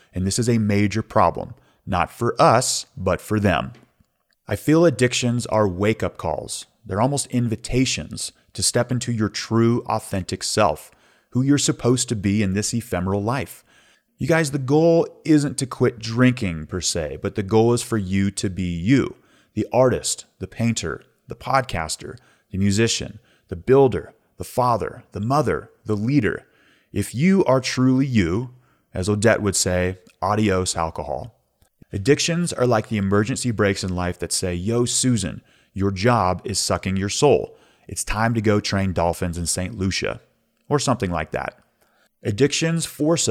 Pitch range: 95-125 Hz